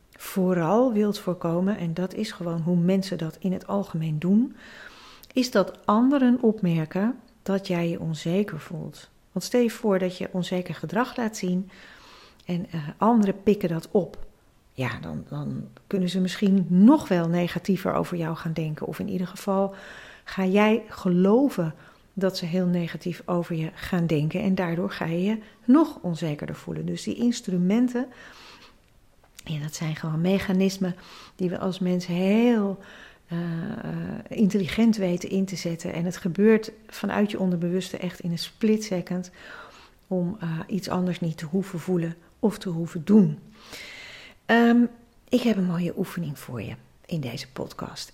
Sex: female